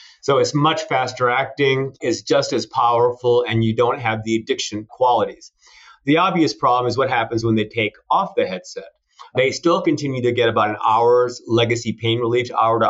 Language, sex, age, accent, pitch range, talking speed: English, male, 40-59, American, 115-165 Hz, 190 wpm